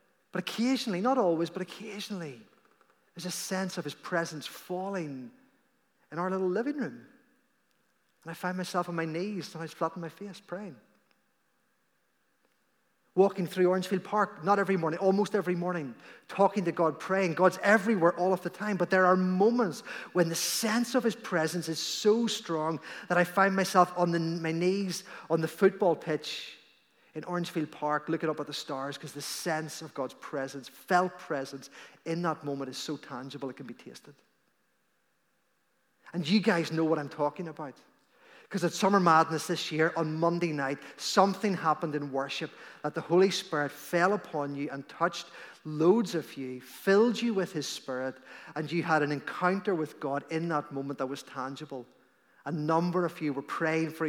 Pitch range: 150-190 Hz